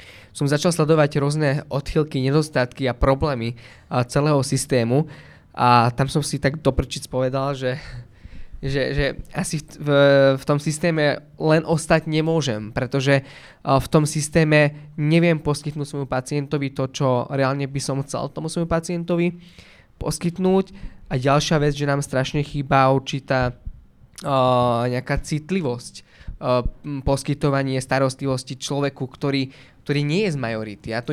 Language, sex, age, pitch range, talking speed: Slovak, male, 20-39, 130-150 Hz, 135 wpm